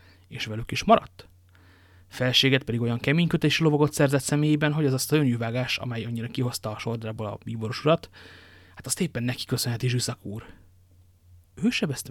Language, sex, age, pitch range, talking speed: Hungarian, male, 30-49, 95-135 Hz, 165 wpm